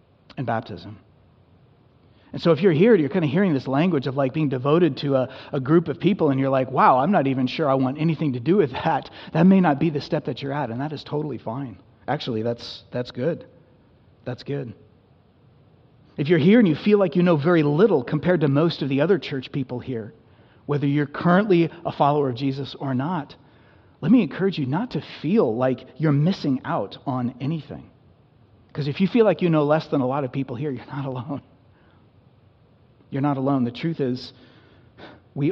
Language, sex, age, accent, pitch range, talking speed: English, male, 40-59, American, 125-155 Hz, 210 wpm